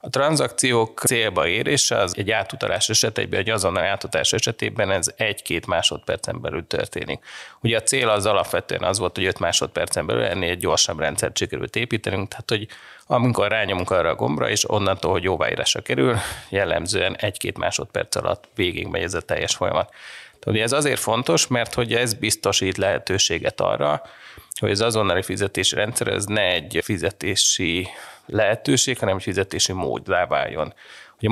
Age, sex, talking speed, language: 30-49, male, 155 wpm, Hungarian